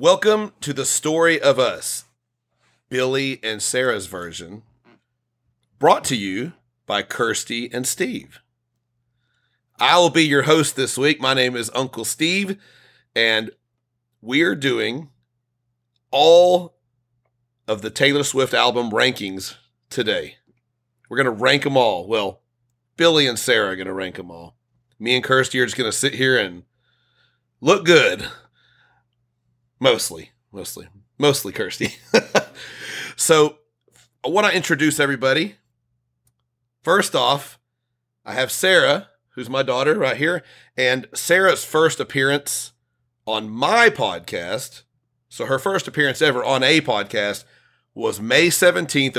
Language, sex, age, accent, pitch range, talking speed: English, male, 40-59, American, 120-140 Hz, 130 wpm